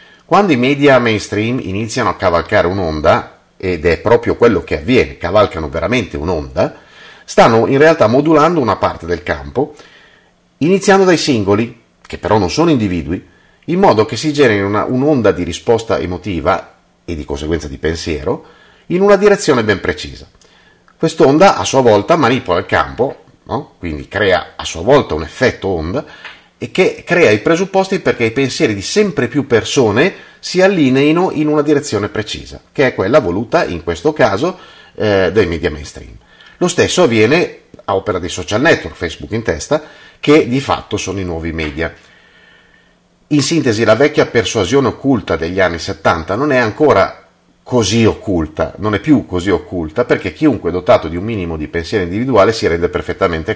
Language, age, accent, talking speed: Italian, 30-49, native, 160 wpm